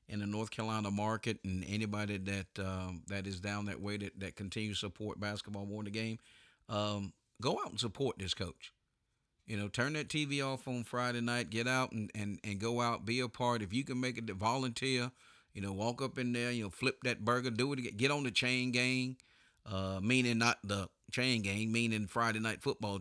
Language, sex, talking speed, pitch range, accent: English, male, 220 wpm, 105-125 Hz, American